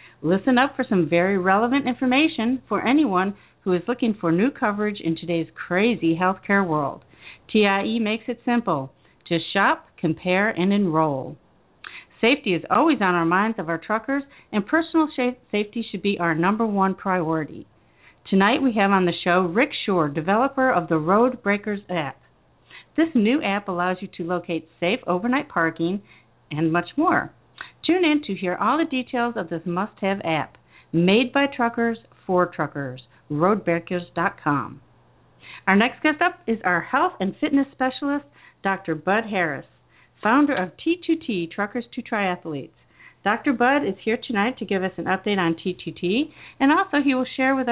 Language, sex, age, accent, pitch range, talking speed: English, female, 50-69, American, 170-245 Hz, 160 wpm